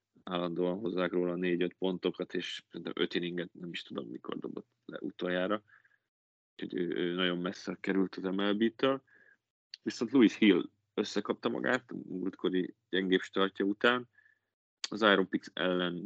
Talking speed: 140 wpm